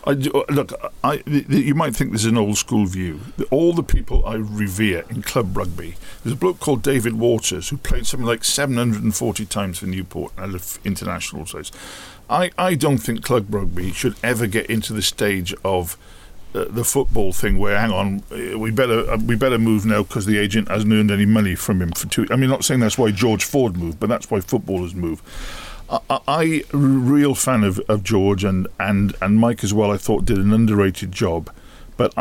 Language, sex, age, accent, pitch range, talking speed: English, male, 50-69, British, 95-115 Hz, 205 wpm